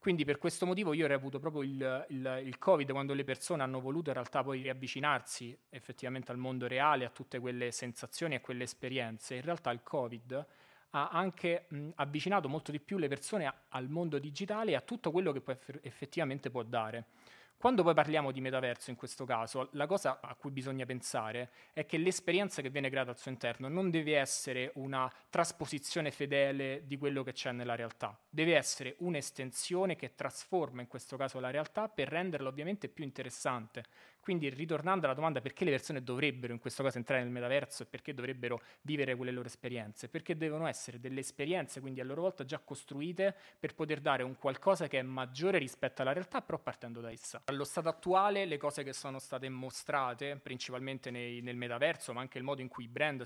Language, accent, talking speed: Italian, native, 195 wpm